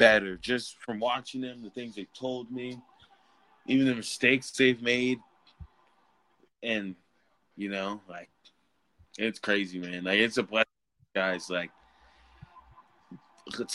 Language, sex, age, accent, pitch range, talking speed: English, male, 20-39, American, 100-125 Hz, 125 wpm